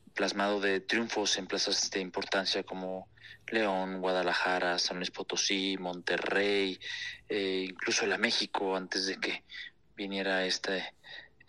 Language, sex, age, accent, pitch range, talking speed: Spanish, male, 30-49, Mexican, 95-115 Hz, 115 wpm